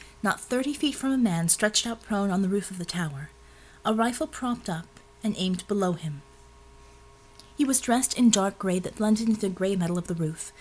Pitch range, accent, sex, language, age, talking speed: 155-225 Hz, American, female, English, 30-49, 215 wpm